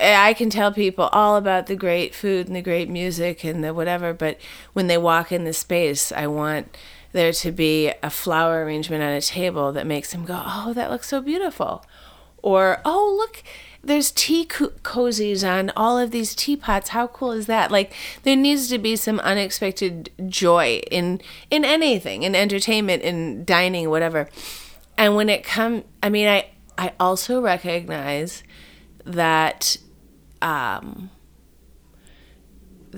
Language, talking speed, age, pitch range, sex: English, 155 wpm, 30-49, 160-205 Hz, female